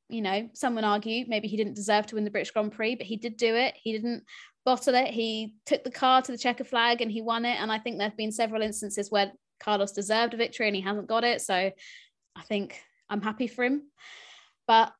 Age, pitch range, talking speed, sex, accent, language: 20-39, 210-260 Hz, 245 wpm, female, British, English